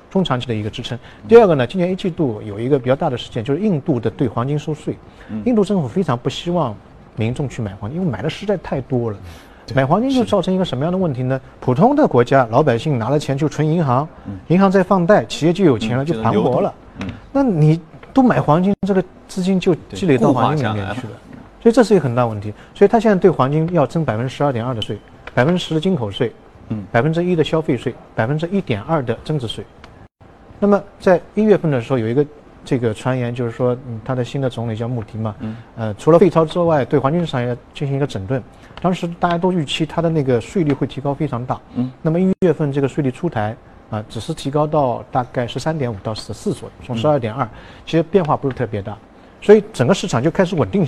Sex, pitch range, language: male, 120-170 Hz, Chinese